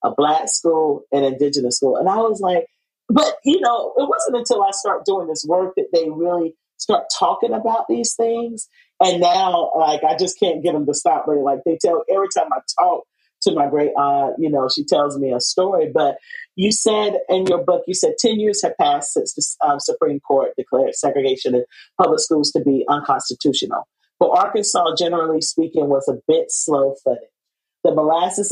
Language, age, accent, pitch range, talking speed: English, 40-59, American, 145-240 Hz, 195 wpm